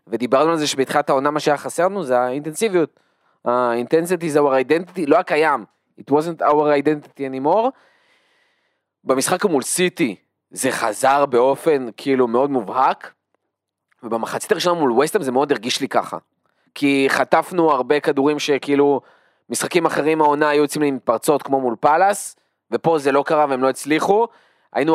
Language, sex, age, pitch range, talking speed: Hebrew, male, 20-39, 130-160 Hz, 155 wpm